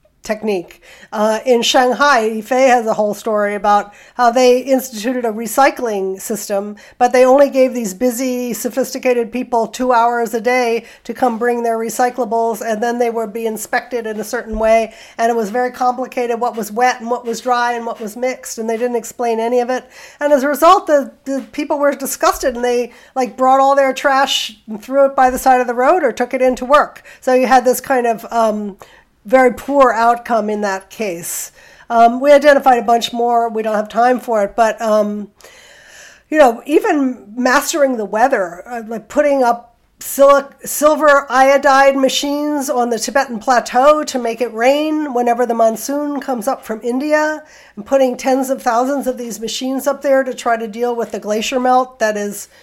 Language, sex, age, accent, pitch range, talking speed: English, female, 50-69, American, 225-265 Hz, 195 wpm